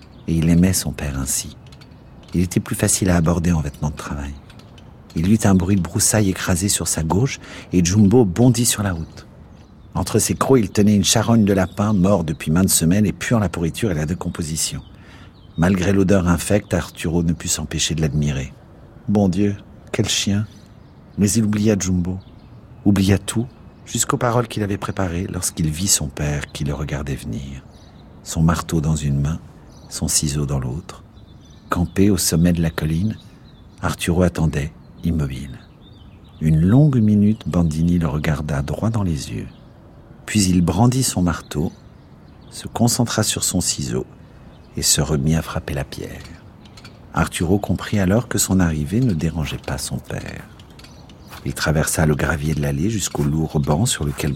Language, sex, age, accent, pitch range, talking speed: French, male, 50-69, French, 80-105 Hz, 170 wpm